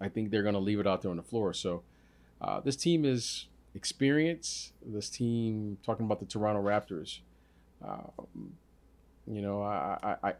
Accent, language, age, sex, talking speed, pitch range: American, English, 40-59, male, 165 wpm, 90-110 Hz